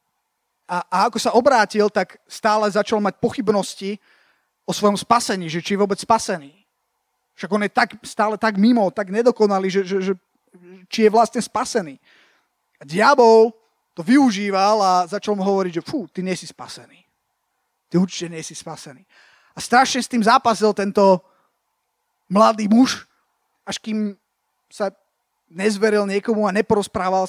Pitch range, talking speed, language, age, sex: 175-215 Hz, 145 wpm, Slovak, 30-49, male